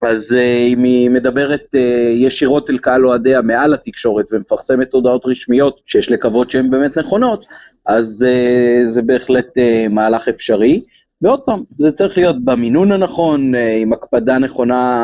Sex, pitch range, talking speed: male, 120-150 Hz, 130 wpm